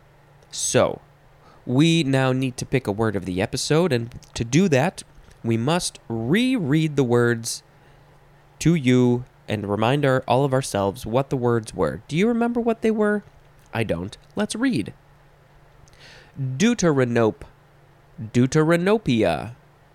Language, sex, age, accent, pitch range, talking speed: English, male, 20-39, American, 115-150 Hz, 130 wpm